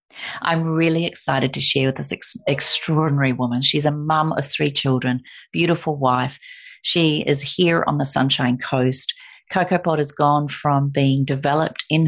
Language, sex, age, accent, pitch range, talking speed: English, female, 40-59, Australian, 130-150 Hz, 160 wpm